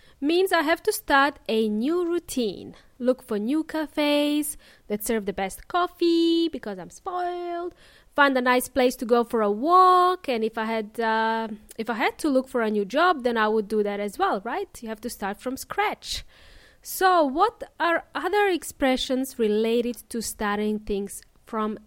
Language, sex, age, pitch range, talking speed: English, female, 20-39, 225-320 Hz, 185 wpm